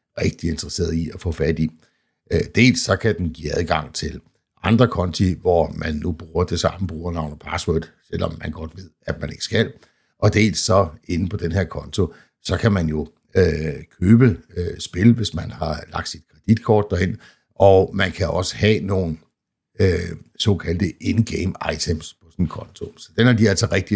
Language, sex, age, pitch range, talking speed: Danish, male, 60-79, 80-100 Hz, 190 wpm